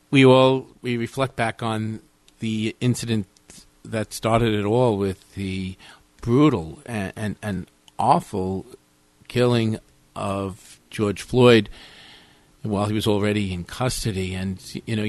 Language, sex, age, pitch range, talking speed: English, male, 50-69, 100-120 Hz, 125 wpm